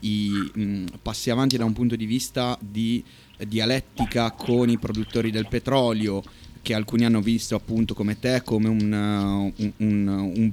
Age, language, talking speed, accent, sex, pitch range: 30-49, Italian, 140 wpm, native, male, 105-120 Hz